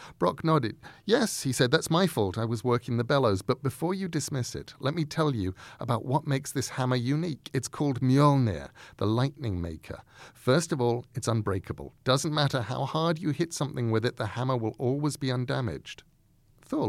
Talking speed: 195 wpm